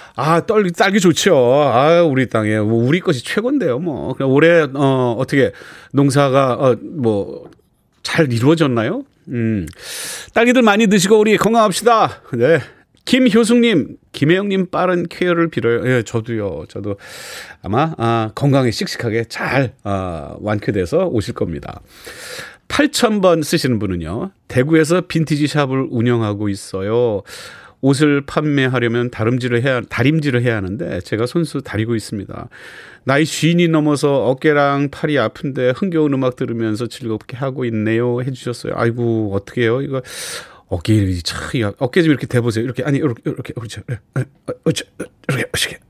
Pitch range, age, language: 115-160 Hz, 40-59, Korean